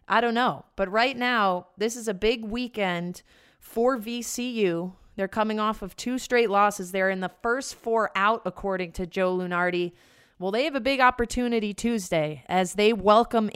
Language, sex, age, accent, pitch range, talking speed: English, female, 30-49, American, 190-225 Hz, 175 wpm